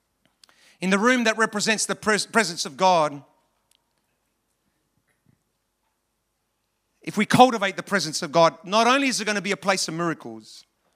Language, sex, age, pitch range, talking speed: English, male, 40-59, 130-195 Hz, 150 wpm